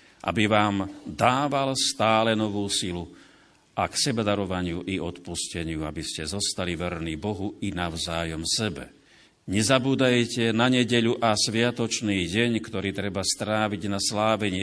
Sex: male